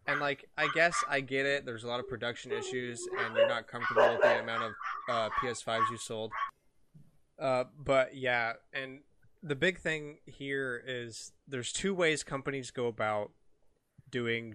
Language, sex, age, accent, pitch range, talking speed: English, male, 20-39, American, 115-145 Hz, 170 wpm